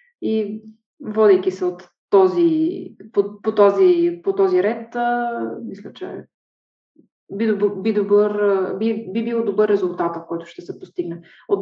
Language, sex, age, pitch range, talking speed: Bulgarian, female, 20-39, 185-250 Hz, 130 wpm